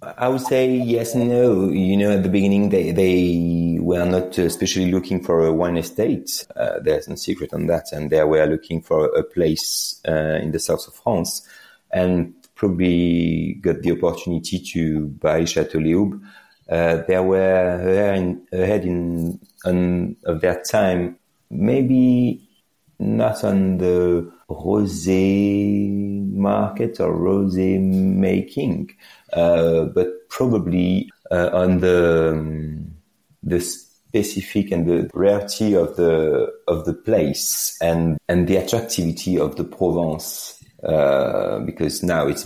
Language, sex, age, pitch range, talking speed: English, male, 30-49, 85-100 Hz, 135 wpm